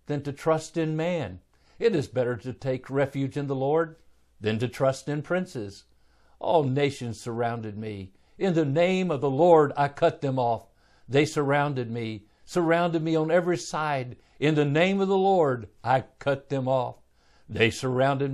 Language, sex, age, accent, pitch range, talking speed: English, male, 60-79, American, 120-160 Hz, 175 wpm